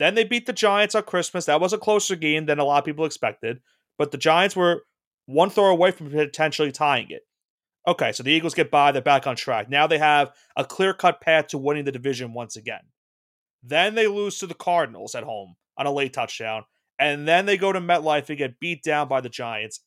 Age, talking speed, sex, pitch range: 30-49, 230 wpm, male, 140-180 Hz